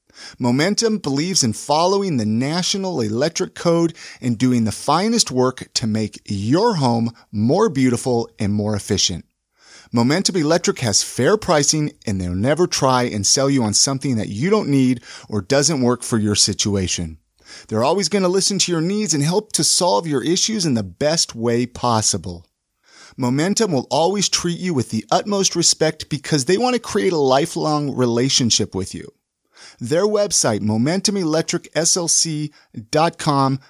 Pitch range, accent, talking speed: 120-175 Hz, American, 155 wpm